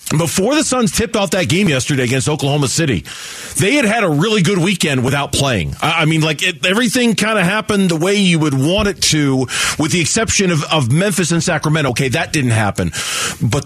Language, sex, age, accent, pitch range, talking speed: English, male, 40-59, American, 125-175 Hz, 210 wpm